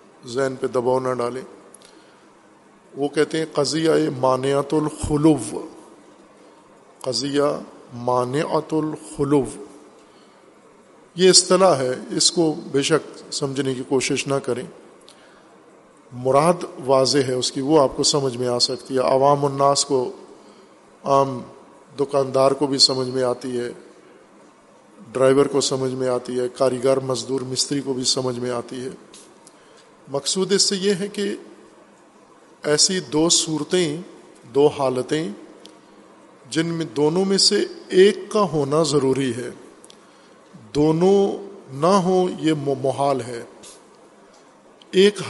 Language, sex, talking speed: Urdu, male, 125 wpm